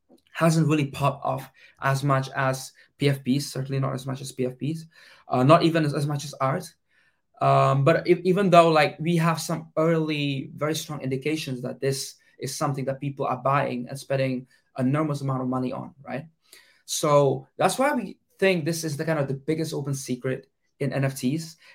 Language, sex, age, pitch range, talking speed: English, male, 20-39, 135-160 Hz, 180 wpm